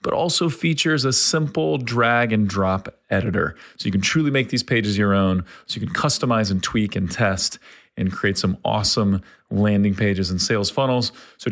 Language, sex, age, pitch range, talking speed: English, male, 30-49, 100-120 Hz, 190 wpm